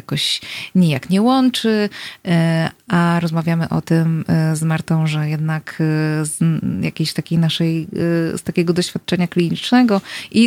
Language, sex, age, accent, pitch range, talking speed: Polish, female, 20-39, native, 160-185 Hz, 110 wpm